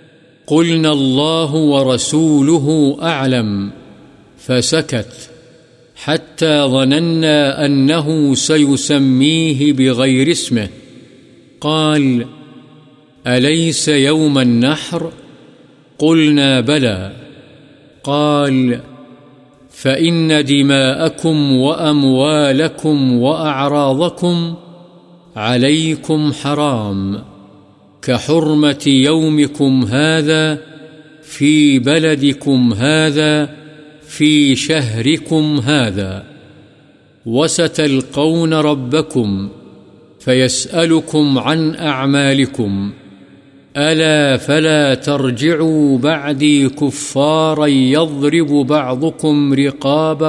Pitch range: 135-155 Hz